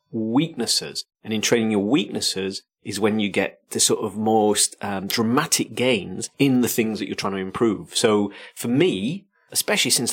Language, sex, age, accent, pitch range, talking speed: English, male, 30-49, British, 100-125 Hz, 180 wpm